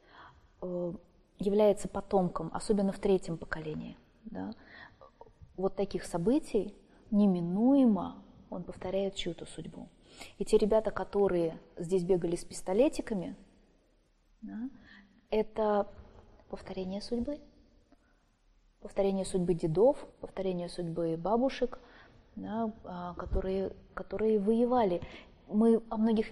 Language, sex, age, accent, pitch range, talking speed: Russian, female, 20-39, native, 180-210 Hz, 90 wpm